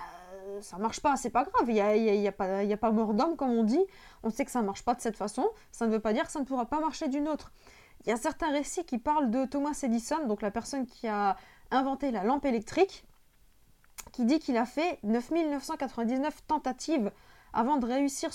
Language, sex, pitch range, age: French, female, 230-290 Hz, 20-39